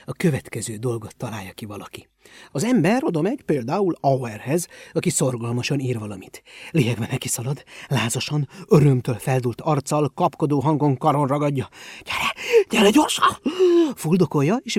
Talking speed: 125 wpm